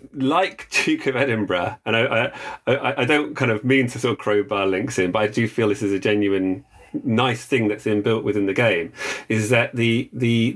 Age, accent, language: 40-59, British, English